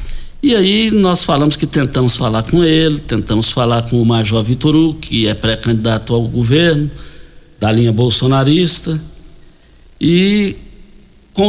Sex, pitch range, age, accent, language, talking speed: male, 115-170 Hz, 60-79, Brazilian, Portuguese, 130 wpm